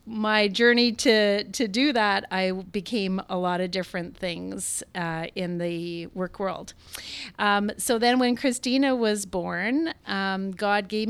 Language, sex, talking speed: English, female, 150 wpm